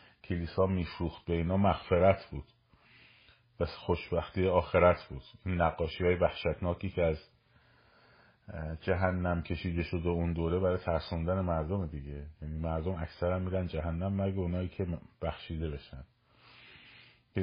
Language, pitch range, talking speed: Persian, 85-115 Hz, 125 wpm